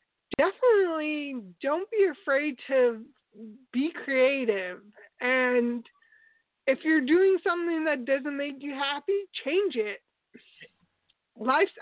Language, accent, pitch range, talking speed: English, American, 240-300 Hz, 100 wpm